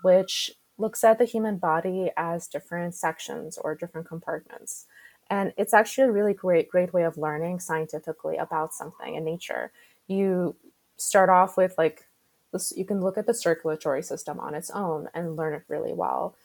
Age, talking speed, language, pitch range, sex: 20-39, 170 wpm, English, 165-200 Hz, female